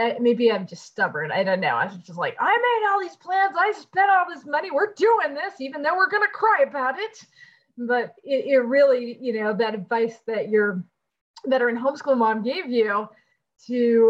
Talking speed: 210 wpm